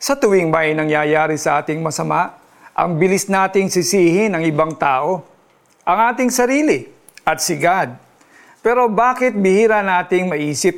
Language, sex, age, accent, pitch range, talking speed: Filipino, male, 50-69, native, 160-205 Hz, 140 wpm